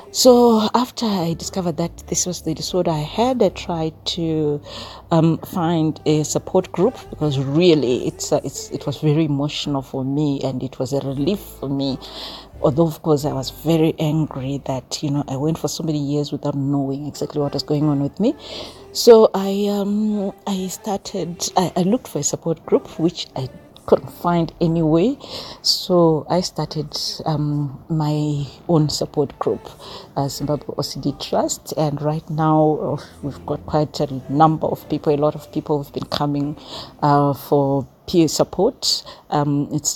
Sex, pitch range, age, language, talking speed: female, 145-170 Hz, 40-59, English, 175 wpm